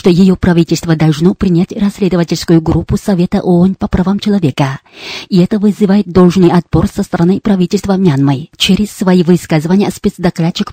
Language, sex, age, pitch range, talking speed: Russian, female, 30-49, 175-200 Hz, 140 wpm